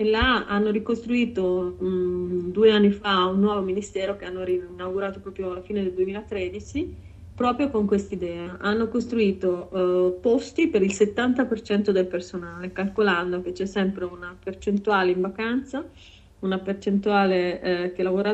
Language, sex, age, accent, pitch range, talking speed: Italian, female, 30-49, native, 180-205 Hz, 140 wpm